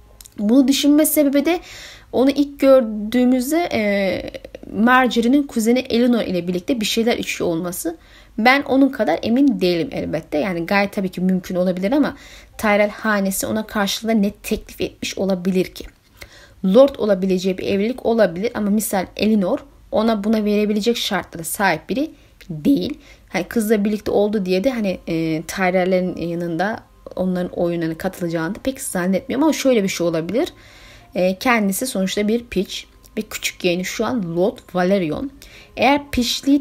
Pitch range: 185-260 Hz